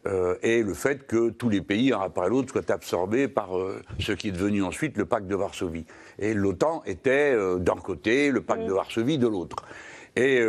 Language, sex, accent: French, male, French